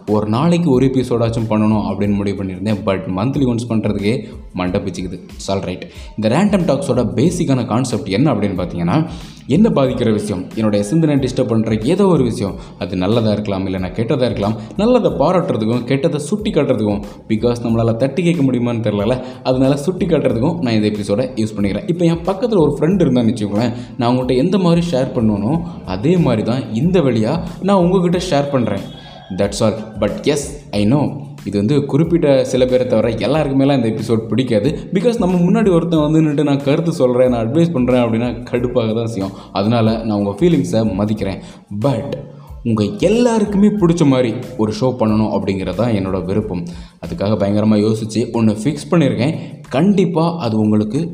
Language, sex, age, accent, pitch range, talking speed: Tamil, male, 20-39, native, 110-155 Hz, 160 wpm